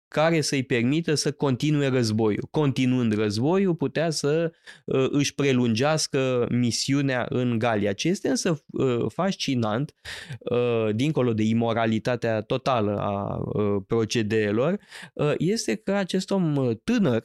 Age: 20-39